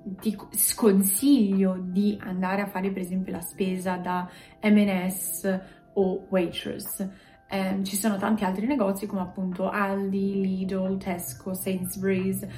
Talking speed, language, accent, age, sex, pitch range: 125 wpm, Italian, native, 20-39, female, 185-210 Hz